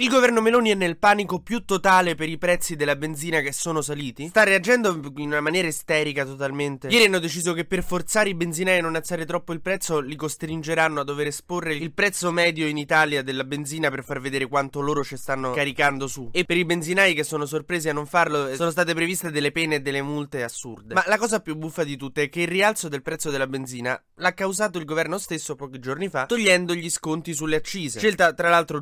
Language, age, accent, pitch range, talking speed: Italian, 20-39, native, 145-180 Hz, 225 wpm